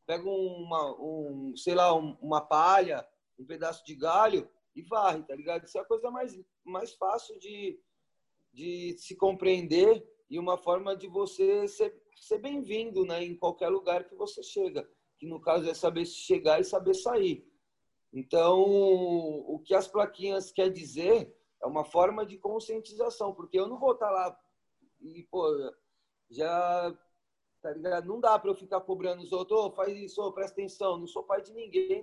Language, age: Portuguese, 30-49